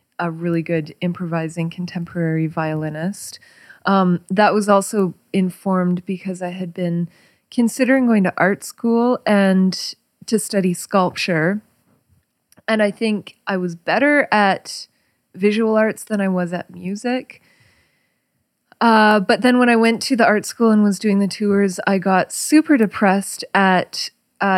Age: 20-39